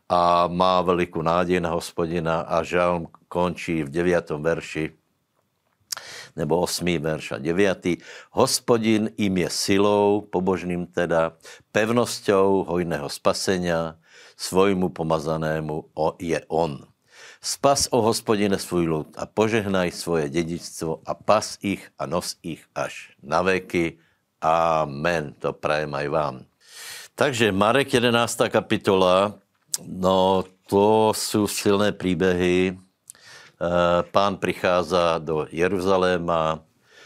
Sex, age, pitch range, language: male, 60-79, 85-95 Hz, Slovak